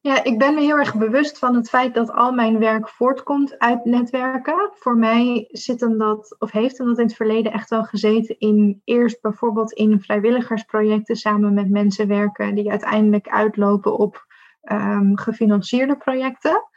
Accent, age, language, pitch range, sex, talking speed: Dutch, 20-39, Dutch, 210-235 Hz, female, 170 wpm